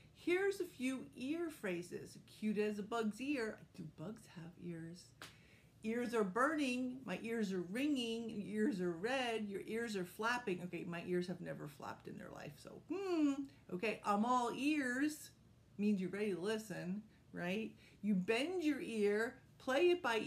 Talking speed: 165 wpm